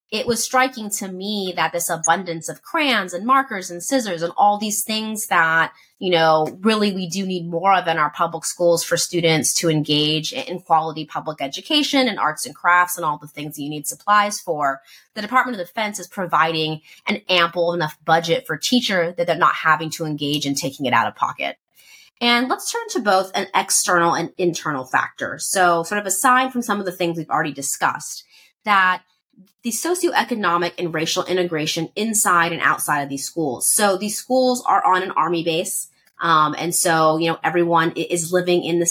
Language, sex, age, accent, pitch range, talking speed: English, female, 30-49, American, 160-205 Hz, 195 wpm